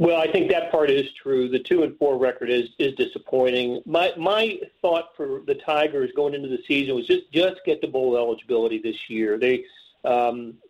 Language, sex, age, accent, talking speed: English, male, 40-59, American, 200 wpm